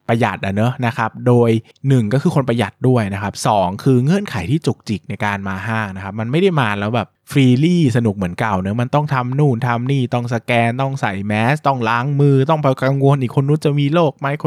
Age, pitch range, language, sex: 20-39, 110-140 Hz, Thai, male